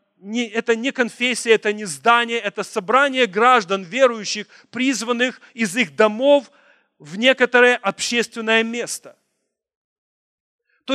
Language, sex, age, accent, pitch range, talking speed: Russian, male, 40-59, native, 215-255 Hz, 105 wpm